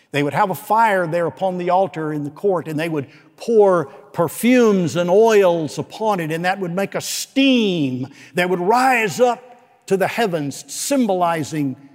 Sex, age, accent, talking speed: male, 60-79, American, 175 wpm